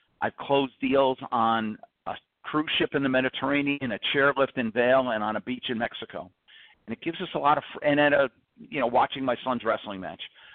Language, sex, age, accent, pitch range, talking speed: English, male, 50-69, American, 115-140 Hz, 210 wpm